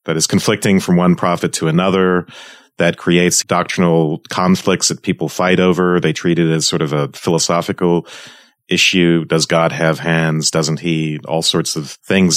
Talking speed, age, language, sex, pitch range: 170 wpm, 40-59, English, male, 80-95 Hz